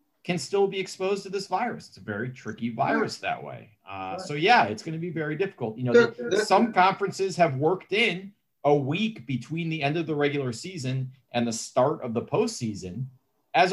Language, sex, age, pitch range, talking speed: English, male, 40-59, 120-175 Hz, 205 wpm